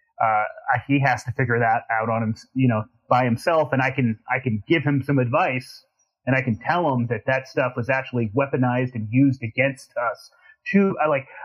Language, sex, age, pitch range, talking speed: English, male, 30-49, 125-150 Hz, 210 wpm